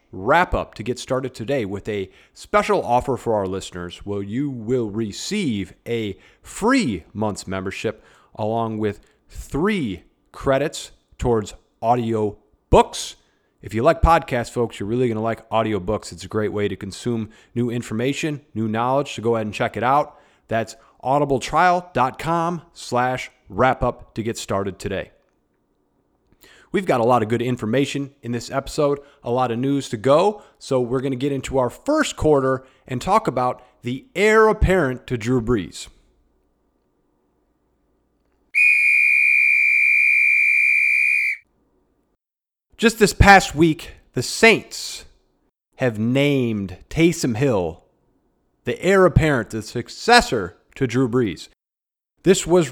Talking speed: 135 wpm